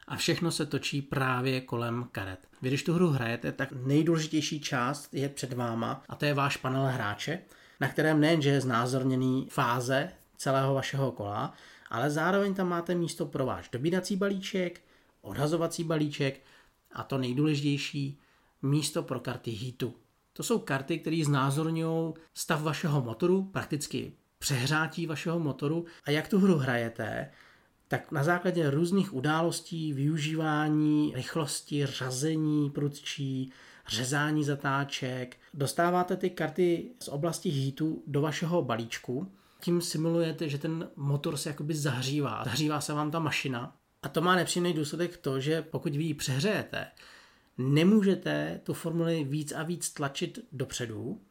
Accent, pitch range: native, 135-165 Hz